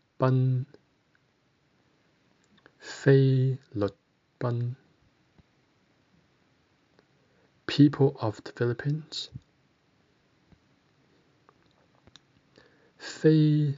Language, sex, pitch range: English, male, 110-145 Hz